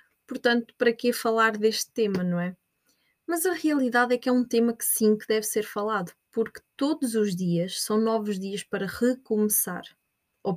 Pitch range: 195-260 Hz